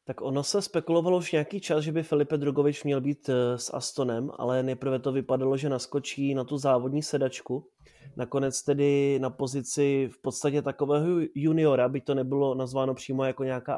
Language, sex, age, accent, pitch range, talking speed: Czech, male, 20-39, native, 130-145 Hz, 175 wpm